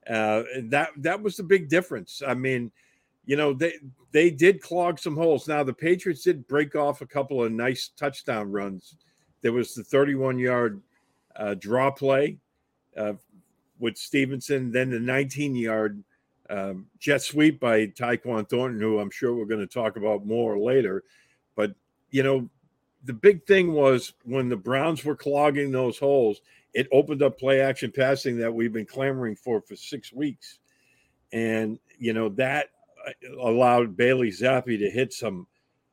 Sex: male